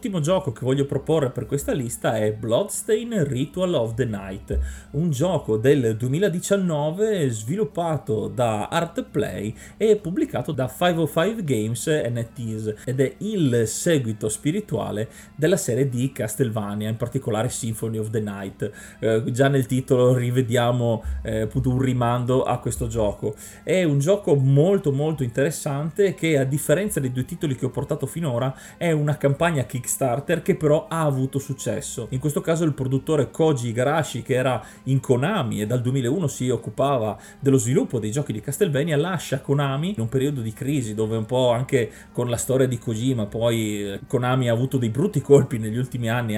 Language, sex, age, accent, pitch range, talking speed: Italian, male, 30-49, native, 115-150 Hz, 165 wpm